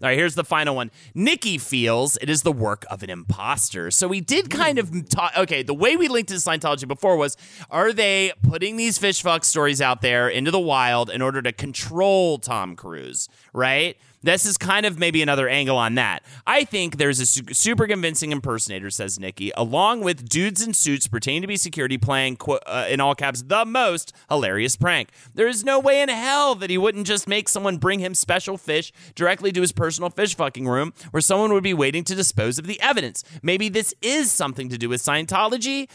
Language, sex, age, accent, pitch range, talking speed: English, male, 30-49, American, 125-195 Hz, 210 wpm